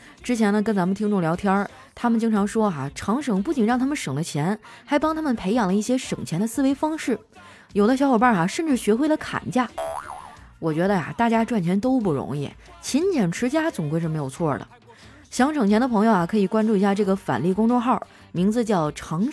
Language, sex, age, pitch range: Chinese, female, 20-39, 185-250 Hz